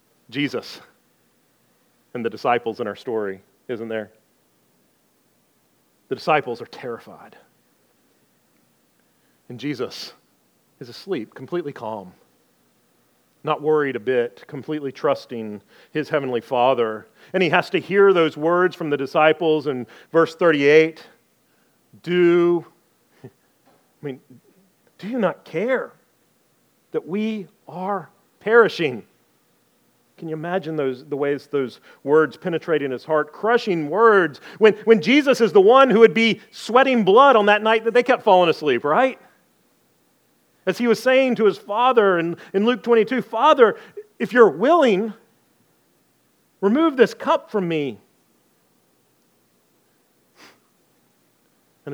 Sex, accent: male, American